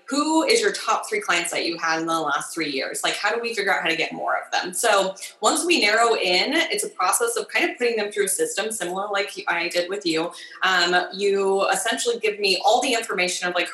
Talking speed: 255 wpm